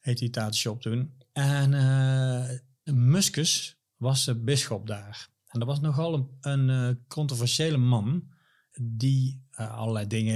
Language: Dutch